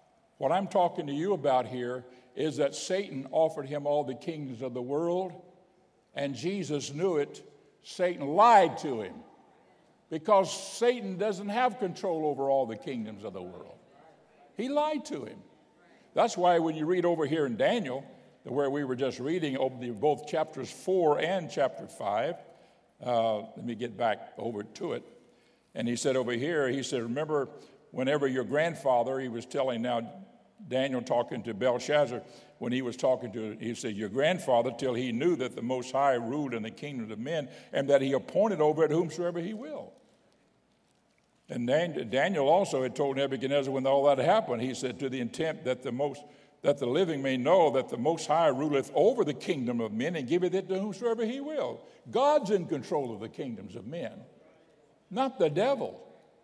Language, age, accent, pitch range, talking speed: English, 60-79, American, 130-185 Hz, 180 wpm